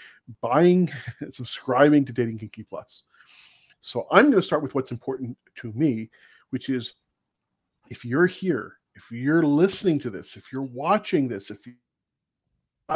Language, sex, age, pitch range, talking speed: English, male, 40-59, 125-160 Hz, 155 wpm